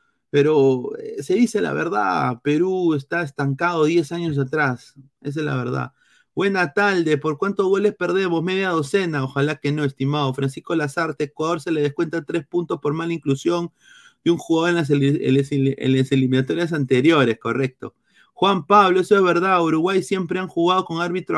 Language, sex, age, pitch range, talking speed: Spanish, male, 30-49, 145-185 Hz, 170 wpm